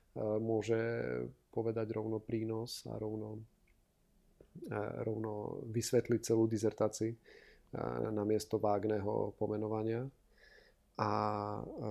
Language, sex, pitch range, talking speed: Czech, male, 110-115 Hz, 75 wpm